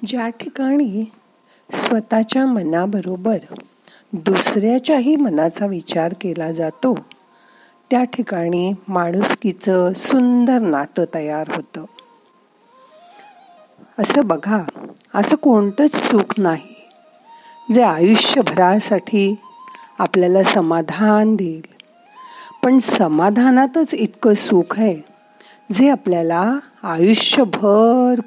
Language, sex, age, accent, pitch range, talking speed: Marathi, female, 50-69, native, 175-255 Hz, 60 wpm